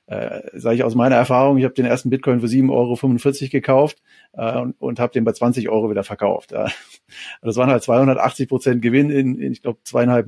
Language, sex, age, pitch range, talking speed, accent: German, male, 40-59, 115-135 Hz, 205 wpm, German